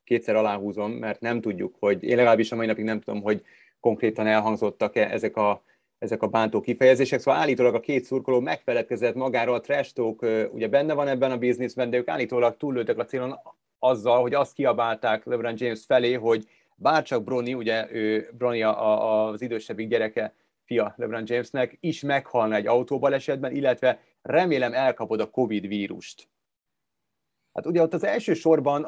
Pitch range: 110-125 Hz